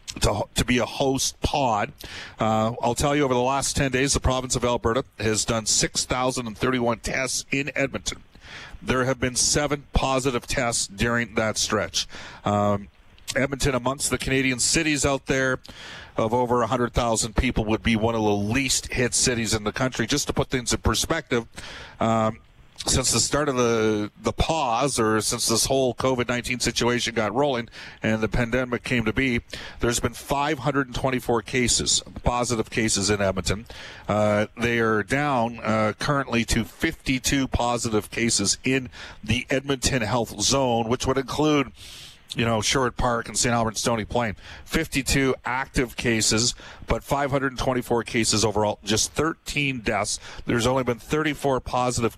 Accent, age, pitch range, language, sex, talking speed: American, 40-59, 110-130 Hz, English, male, 155 wpm